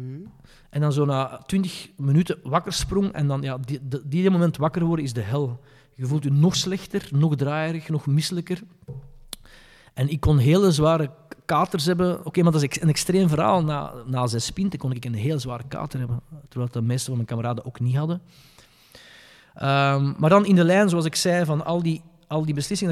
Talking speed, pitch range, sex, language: 205 wpm, 135-170 Hz, male, Dutch